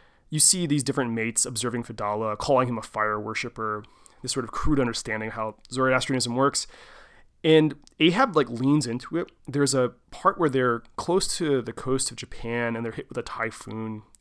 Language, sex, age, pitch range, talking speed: English, male, 30-49, 115-140 Hz, 185 wpm